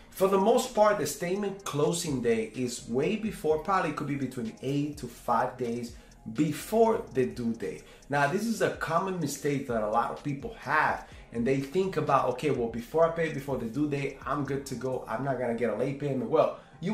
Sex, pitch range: male, 130-175 Hz